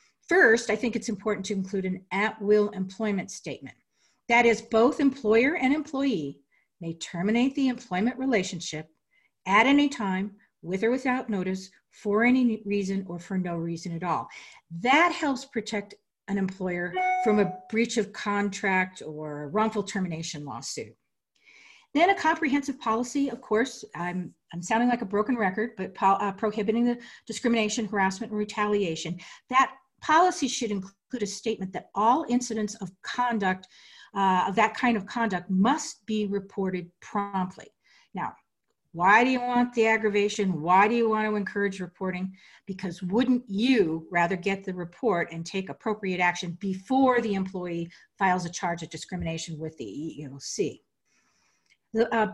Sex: female